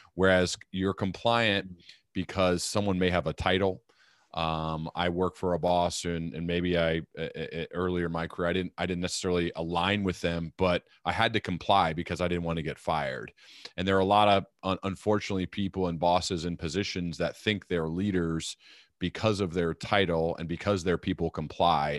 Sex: male